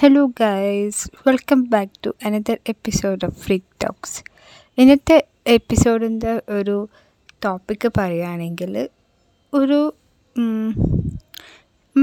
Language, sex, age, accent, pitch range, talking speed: Malayalam, female, 20-39, native, 200-235 Hz, 90 wpm